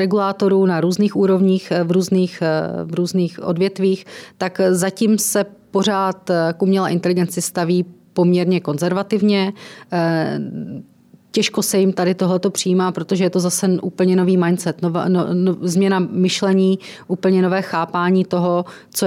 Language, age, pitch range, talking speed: Czech, 30-49, 175-190 Hz, 130 wpm